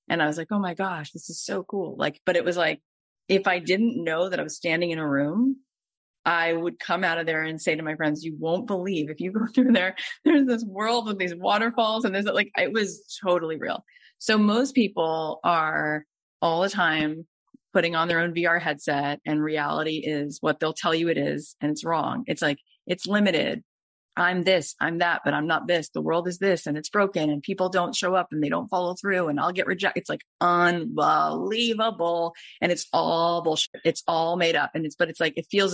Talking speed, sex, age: 225 wpm, female, 30-49